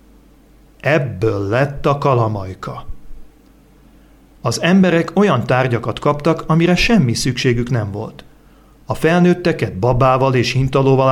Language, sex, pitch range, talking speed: Hungarian, male, 120-150 Hz, 105 wpm